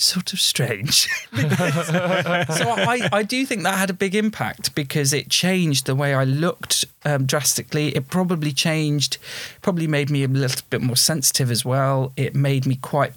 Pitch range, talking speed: 125-150 Hz, 180 wpm